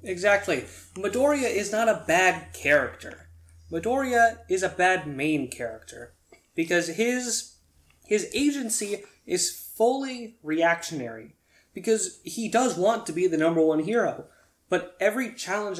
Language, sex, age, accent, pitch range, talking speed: English, male, 20-39, American, 165-220 Hz, 125 wpm